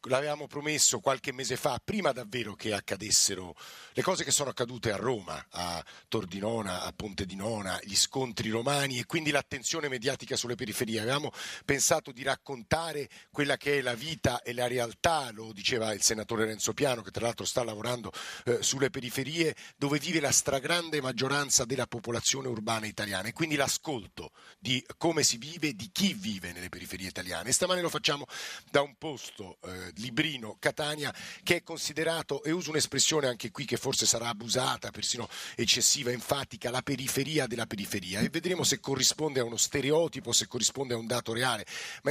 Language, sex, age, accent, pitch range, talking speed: Italian, male, 50-69, native, 115-150 Hz, 170 wpm